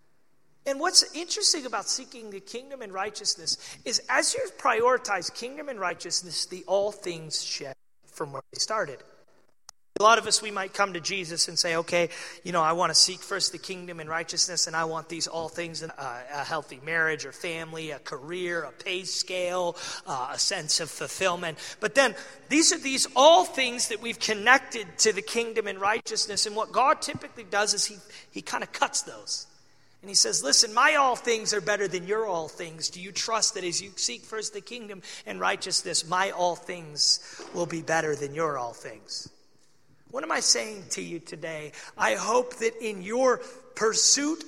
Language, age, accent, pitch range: English, 30-49, American, 170-230 Hz